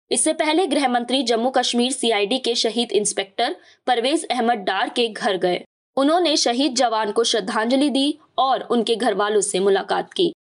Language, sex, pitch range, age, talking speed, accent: Hindi, female, 230-295 Hz, 20-39, 165 wpm, native